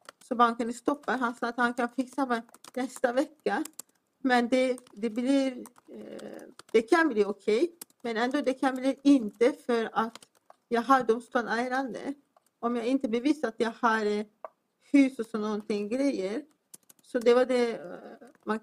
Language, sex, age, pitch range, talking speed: Swedish, female, 40-59, 235-270 Hz, 160 wpm